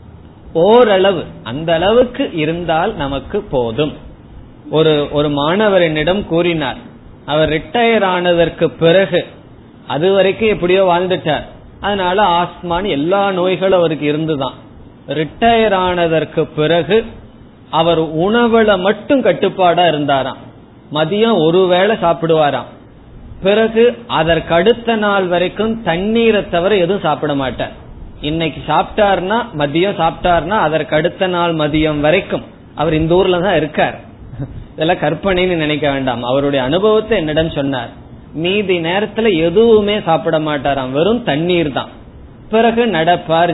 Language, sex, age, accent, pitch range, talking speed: Tamil, male, 30-49, native, 145-190 Hz, 70 wpm